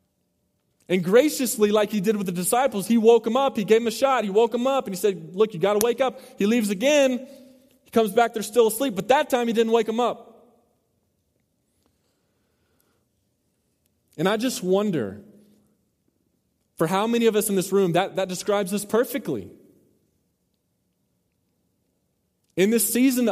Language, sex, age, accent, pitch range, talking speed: English, male, 20-39, American, 180-240 Hz, 170 wpm